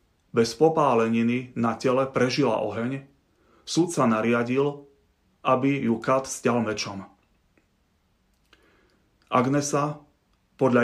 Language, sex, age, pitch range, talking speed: Slovak, male, 30-49, 115-130 Hz, 90 wpm